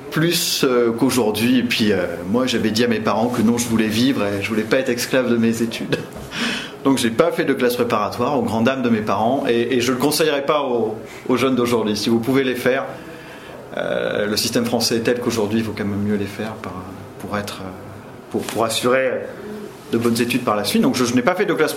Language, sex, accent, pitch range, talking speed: French, male, French, 110-130 Hz, 240 wpm